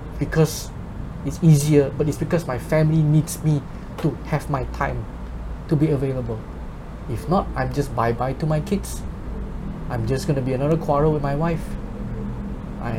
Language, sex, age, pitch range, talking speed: Malay, male, 20-39, 130-185 Hz, 165 wpm